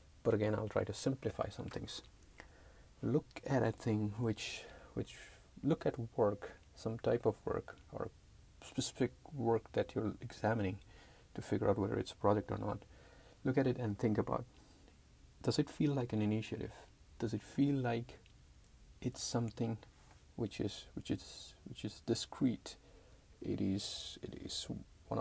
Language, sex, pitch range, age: English, male, 95-115 Hz, 30-49